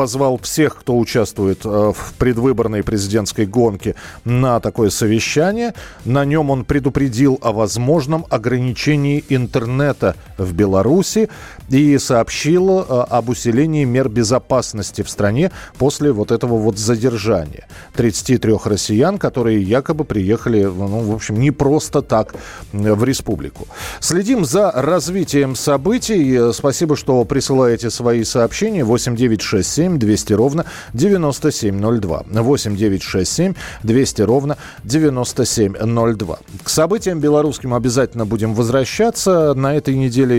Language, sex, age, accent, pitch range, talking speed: Russian, male, 40-59, native, 110-140 Hz, 120 wpm